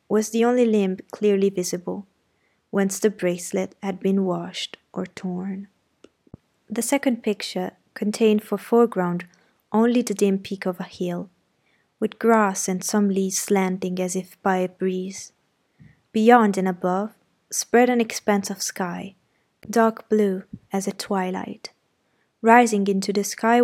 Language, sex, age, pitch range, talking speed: Italian, female, 20-39, 190-215 Hz, 140 wpm